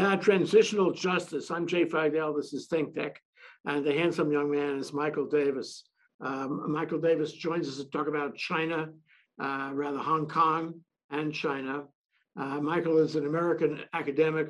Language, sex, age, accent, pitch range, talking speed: English, male, 60-79, American, 145-170 Hz, 155 wpm